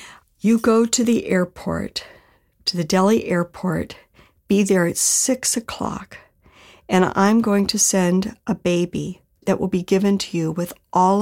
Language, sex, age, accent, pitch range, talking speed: English, female, 50-69, American, 170-220 Hz, 155 wpm